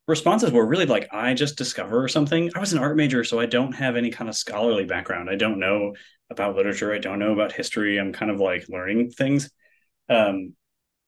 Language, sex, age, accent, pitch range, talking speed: English, male, 30-49, American, 100-130 Hz, 210 wpm